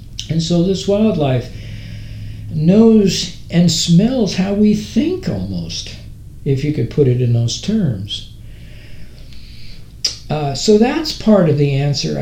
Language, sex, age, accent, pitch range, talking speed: English, male, 60-79, American, 115-155 Hz, 130 wpm